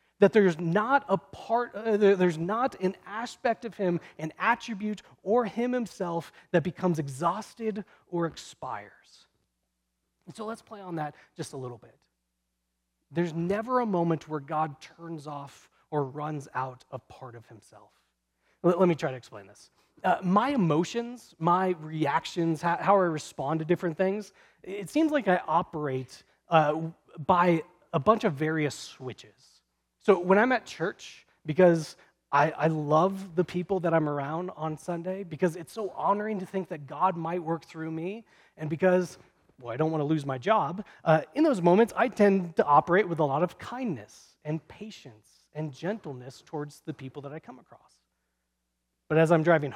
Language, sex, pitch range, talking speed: English, male, 150-195 Hz, 170 wpm